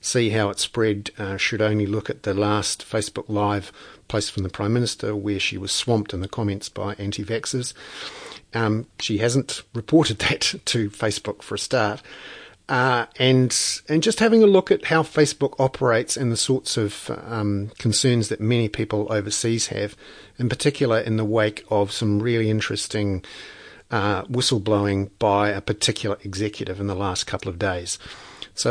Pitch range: 105-125 Hz